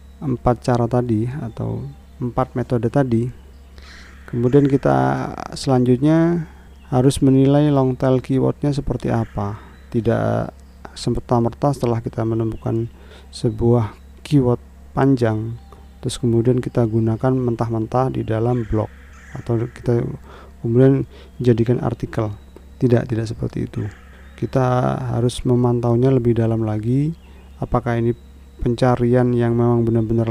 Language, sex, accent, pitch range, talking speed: Indonesian, male, native, 110-130 Hz, 110 wpm